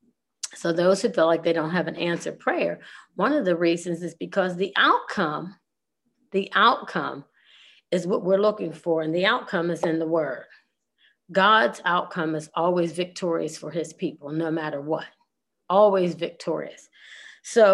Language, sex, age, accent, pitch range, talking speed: English, female, 30-49, American, 165-195 Hz, 160 wpm